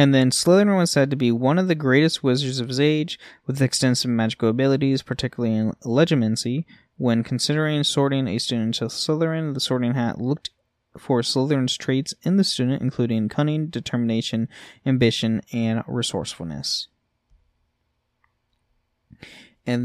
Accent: American